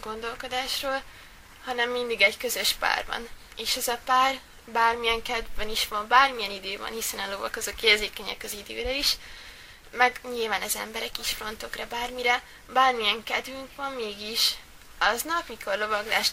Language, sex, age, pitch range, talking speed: Hungarian, female, 20-39, 210-255 Hz, 145 wpm